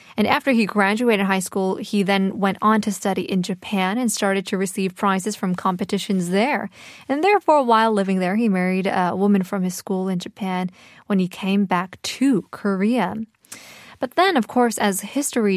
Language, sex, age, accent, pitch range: Korean, female, 20-39, American, 190-230 Hz